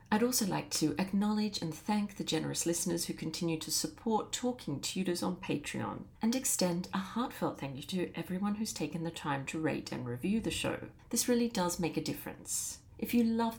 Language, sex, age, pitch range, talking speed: English, female, 40-59, 160-225 Hz, 200 wpm